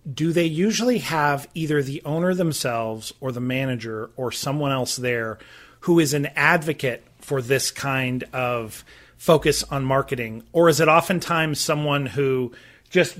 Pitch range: 140-190 Hz